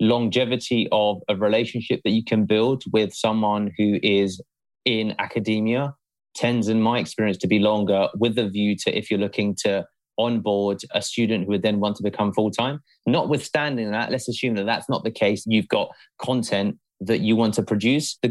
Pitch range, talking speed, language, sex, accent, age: 105-125 Hz, 185 wpm, English, male, British, 30-49